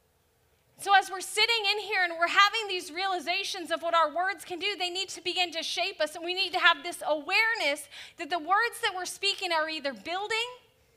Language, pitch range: English, 275-365 Hz